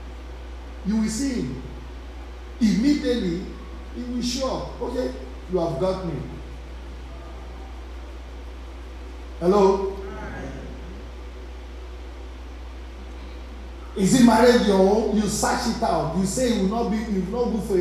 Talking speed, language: 110 wpm, English